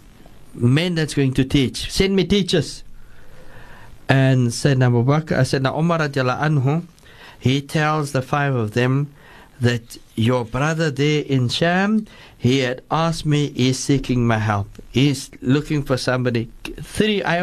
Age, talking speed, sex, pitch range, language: 60-79, 125 wpm, male, 115-155 Hz, English